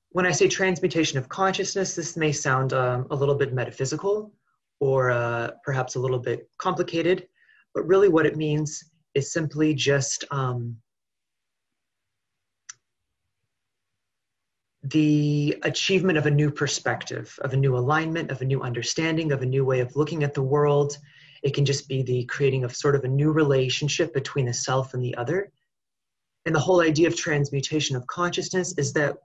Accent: American